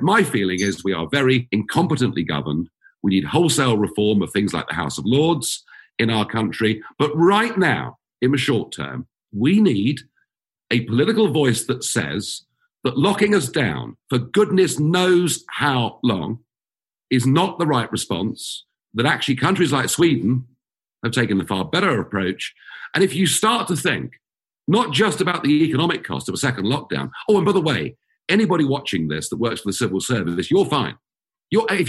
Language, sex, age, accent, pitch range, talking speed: English, male, 50-69, British, 115-180 Hz, 175 wpm